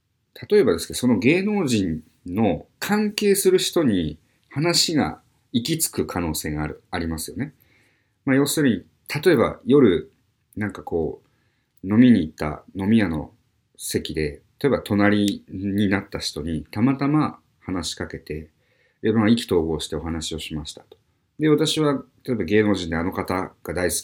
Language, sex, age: Japanese, male, 50-69